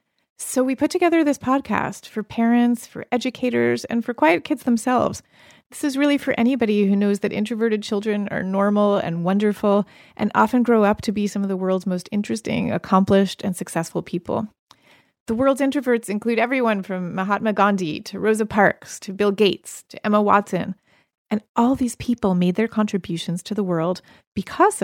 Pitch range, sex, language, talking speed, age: 185-235 Hz, female, English, 175 wpm, 30-49